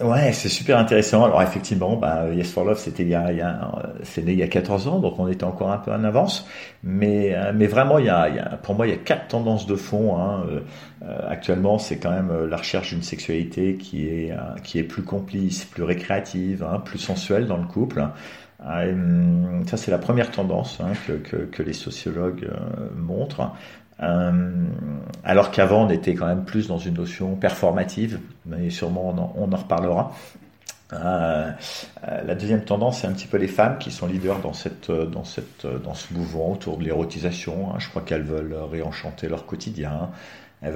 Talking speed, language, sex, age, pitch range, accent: 195 wpm, French, male, 50-69, 85-100 Hz, French